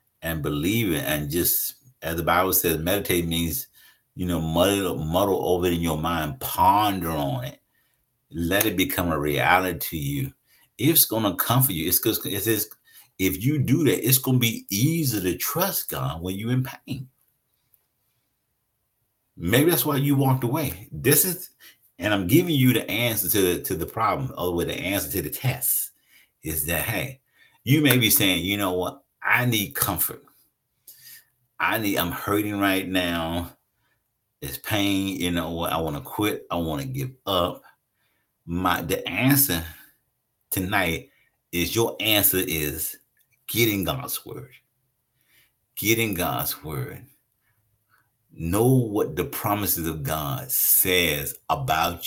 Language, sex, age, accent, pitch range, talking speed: English, male, 50-69, American, 90-130 Hz, 155 wpm